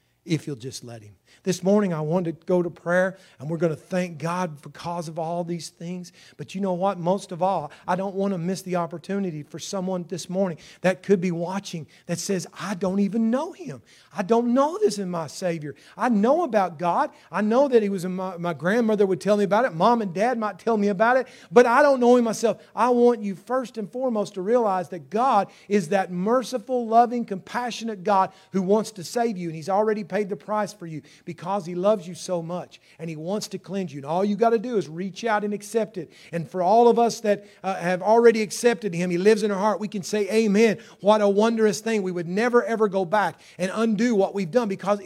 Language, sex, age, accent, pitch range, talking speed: English, male, 40-59, American, 170-215 Hz, 240 wpm